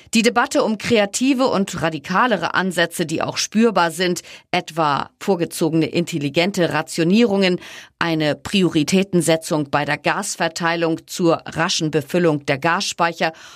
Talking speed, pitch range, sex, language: 110 wpm, 165-220 Hz, female, German